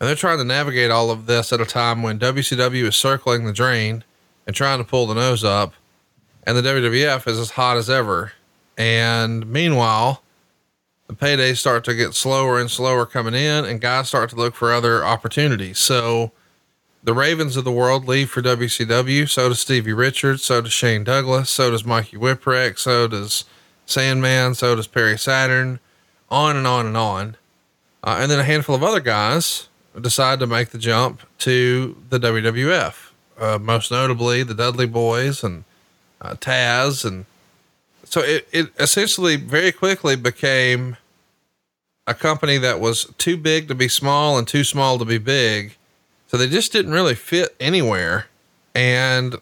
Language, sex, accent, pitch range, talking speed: English, male, American, 115-135 Hz, 170 wpm